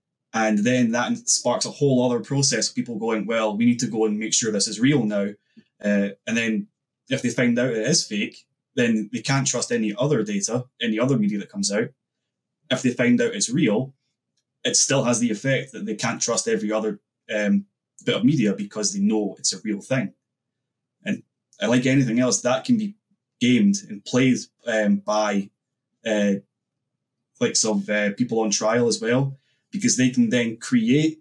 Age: 20-39